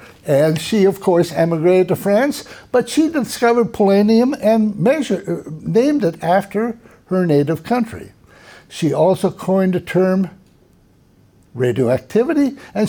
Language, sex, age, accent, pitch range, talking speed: Polish, male, 60-79, American, 140-210 Hz, 115 wpm